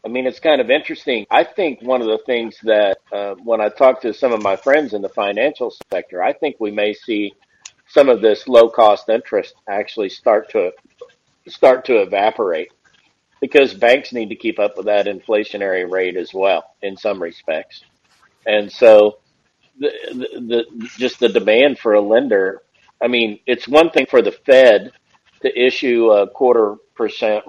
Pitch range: 105-155 Hz